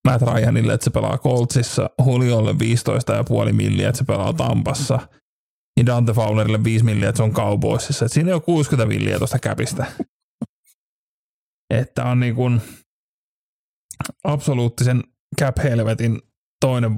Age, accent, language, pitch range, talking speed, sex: 30-49, native, Finnish, 115-135 Hz, 125 wpm, male